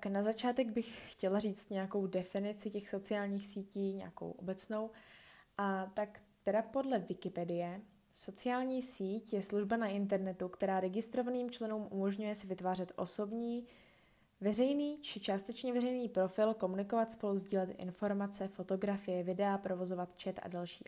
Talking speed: 130 wpm